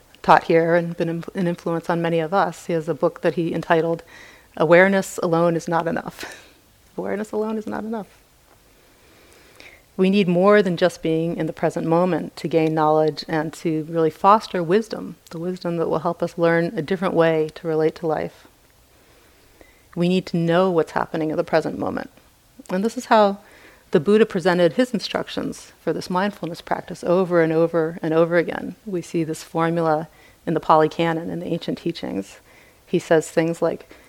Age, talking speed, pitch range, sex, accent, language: 40-59, 185 wpm, 165-200 Hz, female, American, English